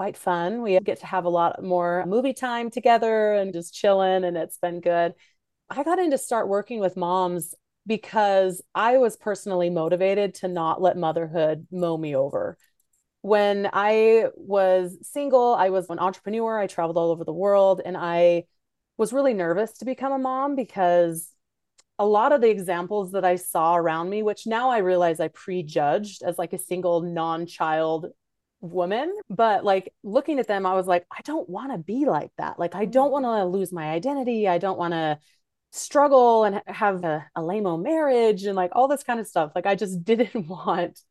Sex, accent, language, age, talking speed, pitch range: female, American, English, 30-49, 190 wpm, 175-220 Hz